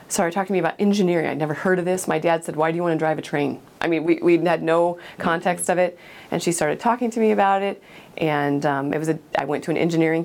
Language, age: English, 30-49